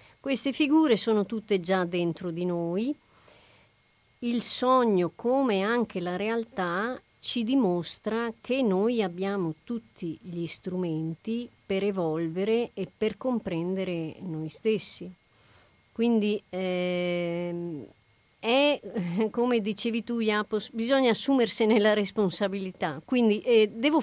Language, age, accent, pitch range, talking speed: Italian, 40-59, native, 180-230 Hz, 105 wpm